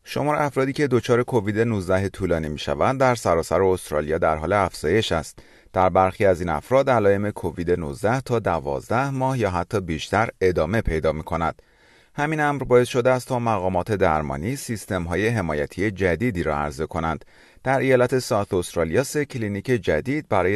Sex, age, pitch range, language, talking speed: male, 30-49, 85-125 Hz, Persian, 165 wpm